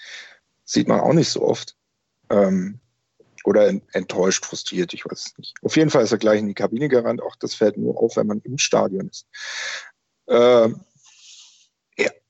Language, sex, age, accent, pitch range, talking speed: German, male, 40-59, German, 110-130 Hz, 165 wpm